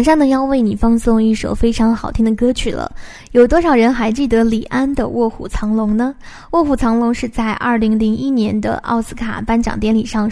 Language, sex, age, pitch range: Chinese, female, 10-29, 220-270 Hz